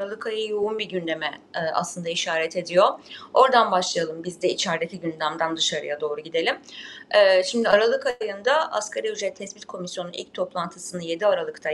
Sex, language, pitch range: female, Turkish, 185-275 Hz